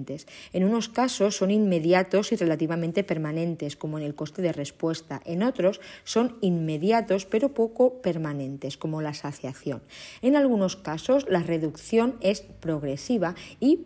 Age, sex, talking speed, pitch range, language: 40-59, female, 140 wpm, 155-200 Hz, Spanish